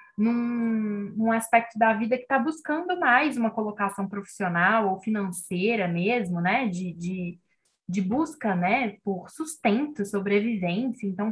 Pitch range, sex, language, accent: 195-240 Hz, female, Portuguese, Brazilian